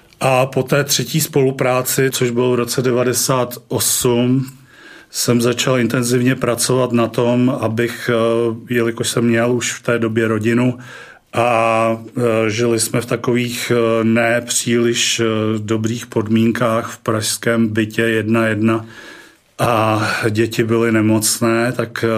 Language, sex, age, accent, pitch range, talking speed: Czech, male, 40-59, native, 110-125 Hz, 115 wpm